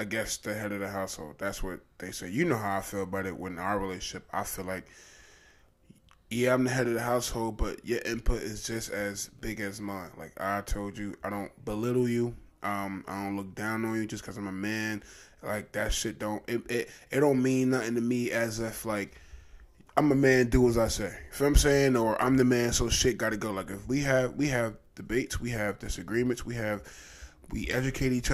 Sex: male